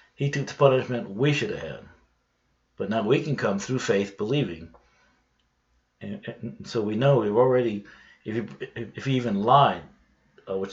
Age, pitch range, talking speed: 50-69, 100-130 Hz, 175 wpm